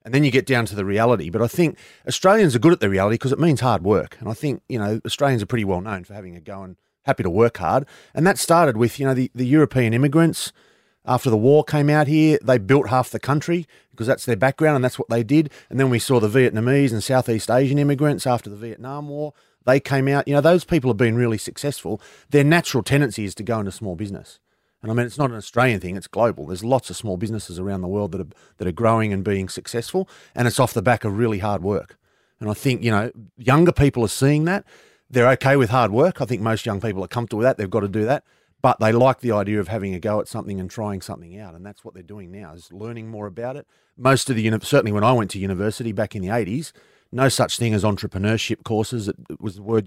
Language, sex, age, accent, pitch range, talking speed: English, male, 30-49, Australian, 105-135 Hz, 260 wpm